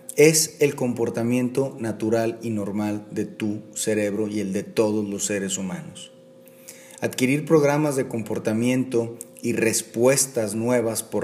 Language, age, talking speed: Spanish, 40-59, 130 wpm